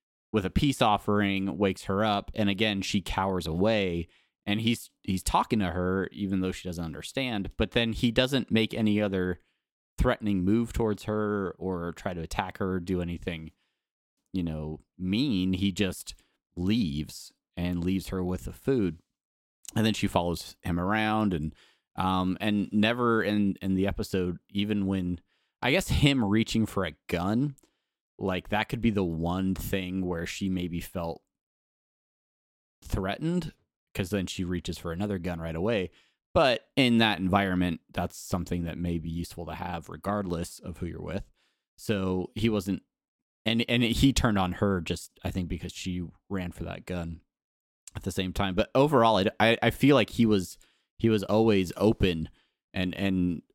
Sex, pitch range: male, 90-105 Hz